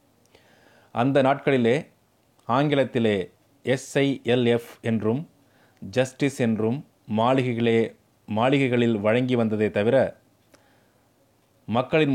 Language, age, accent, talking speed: Tamil, 30-49, native, 65 wpm